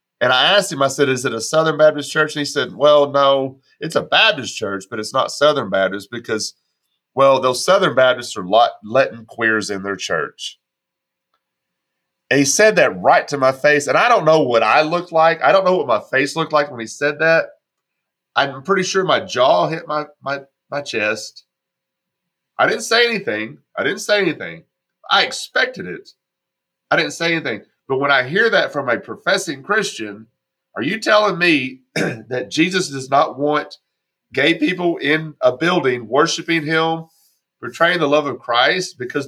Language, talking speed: English, 185 wpm